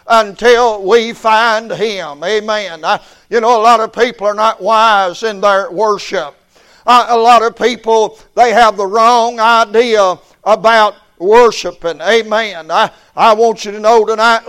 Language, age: English, 60-79